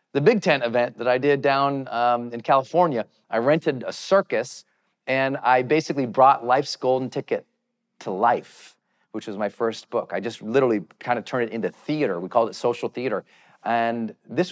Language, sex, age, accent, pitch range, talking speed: English, male, 40-59, American, 130-180 Hz, 185 wpm